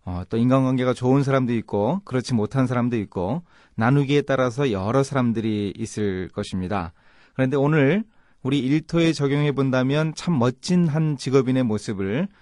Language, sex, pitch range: Korean, male, 110-165 Hz